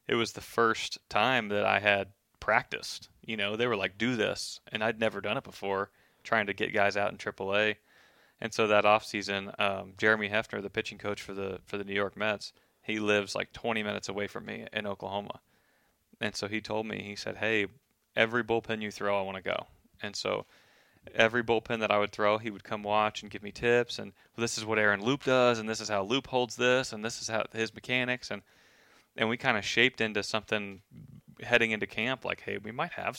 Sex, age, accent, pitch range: male, 20-39, American, 100-115 Hz